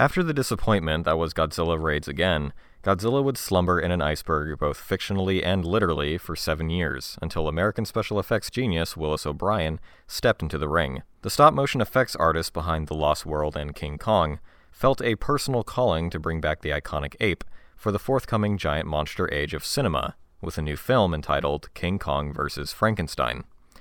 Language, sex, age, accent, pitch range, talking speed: English, male, 30-49, American, 75-105 Hz, 175 wpm